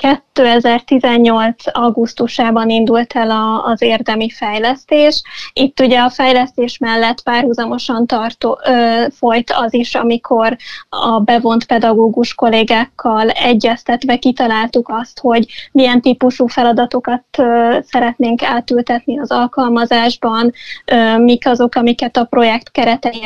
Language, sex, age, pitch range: Hungarian, female, 20-39, 235-255 Hz